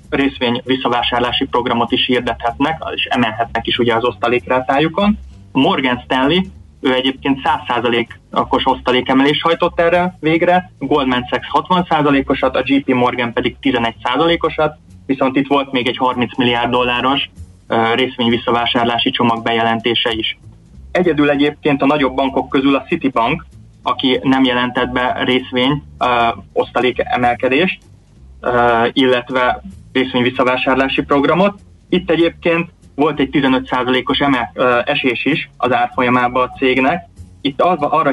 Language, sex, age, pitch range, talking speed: Hungarian, male, 20-39, 120-140 Hz, 120 wpm